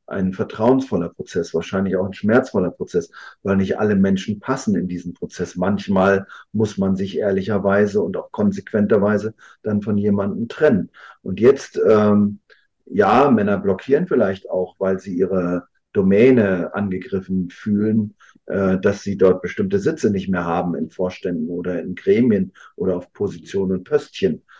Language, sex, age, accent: German, male, 50-69, German